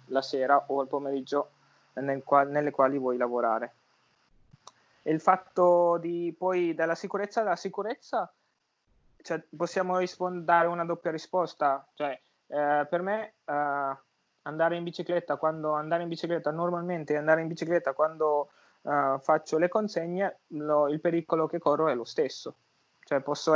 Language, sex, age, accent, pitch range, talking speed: Italian, male, 20-39, native, 145-175 Hz, 150 wpm